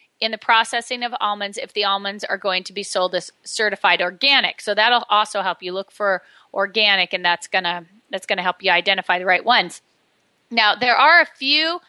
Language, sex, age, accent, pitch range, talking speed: English, female, 30-49, American, 195-240 Hz, 205 wpm